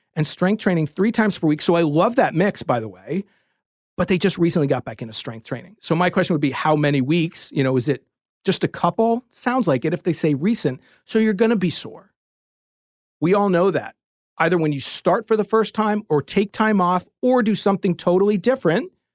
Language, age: English, 40-59